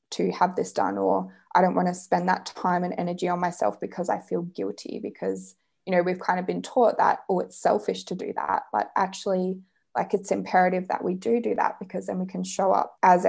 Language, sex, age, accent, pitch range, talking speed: English, female, 20-39, Australian, 180-210 Hz, 235 wpm